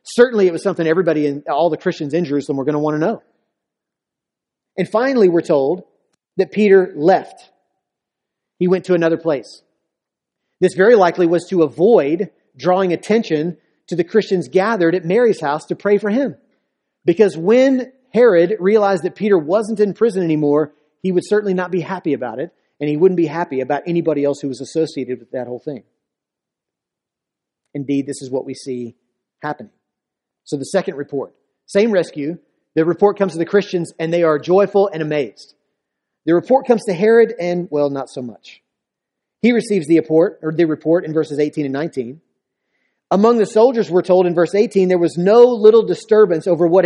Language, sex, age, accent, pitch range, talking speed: English, male, 40-59, American, 150-200 Hz, 180 wpm